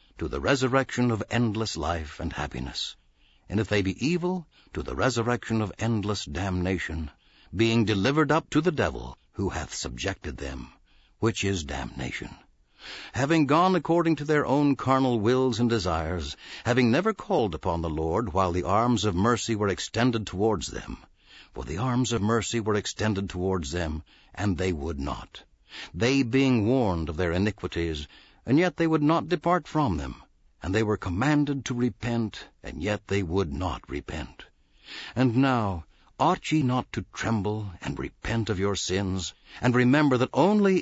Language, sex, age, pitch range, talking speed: English, male, 60-79, 90-135 Hz, 165 wpm